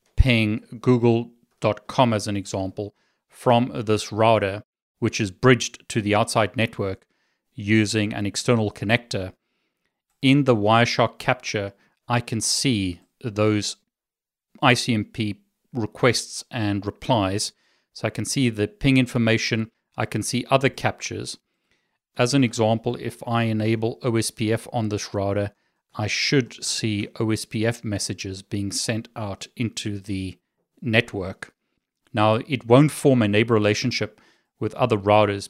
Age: 40-59